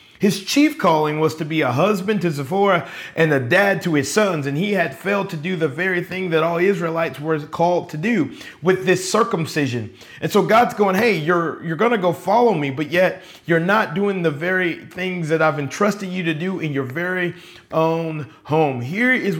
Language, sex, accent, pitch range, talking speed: English, male, American, 135-180 Hz, 205 wpm